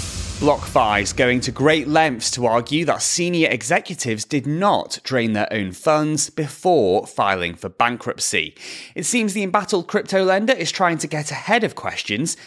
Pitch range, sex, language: 120-190 Hz, male, English